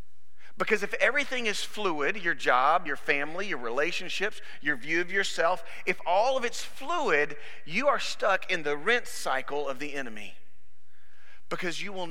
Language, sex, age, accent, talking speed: English, male, 40-59, American, 165 wpm